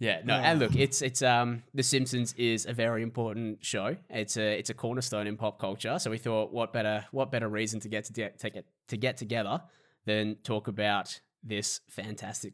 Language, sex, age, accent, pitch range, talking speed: English, male, 20-39, Australian, 105-125 Hz, 205 wpm